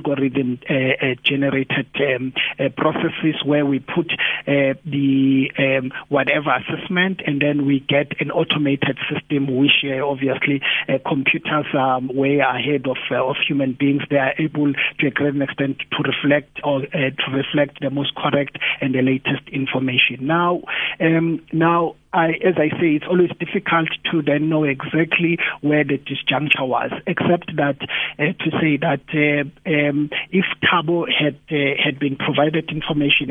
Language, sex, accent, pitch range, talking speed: English, male, South African, 135-160 Hz, 160 wpm